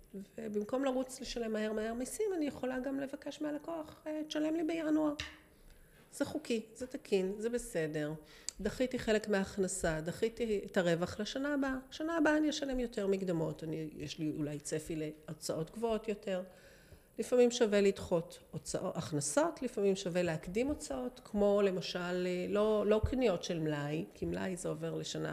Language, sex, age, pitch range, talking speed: Hebrew, female, 40-59, 170-260 Hz, 150 wpm